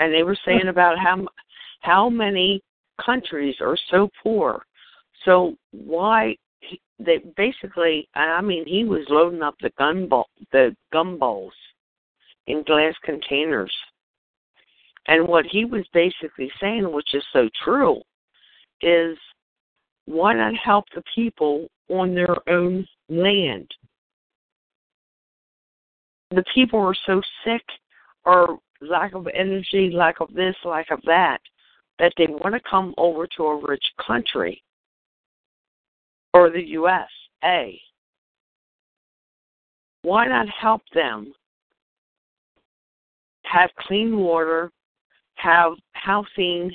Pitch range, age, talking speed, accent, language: 165-200 Hz, 50-69, 115 wpm, American, English